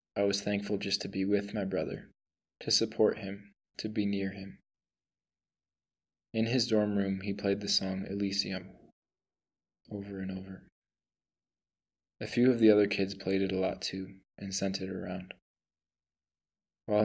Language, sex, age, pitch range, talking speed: English, male, 20-39, 95-105 Hz, 155 wpm